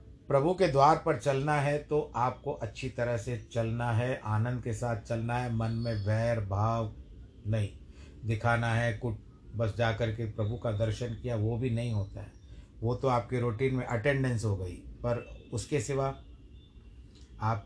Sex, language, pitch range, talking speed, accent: male, Hindi, 105-125 Hz, 170 wpm, native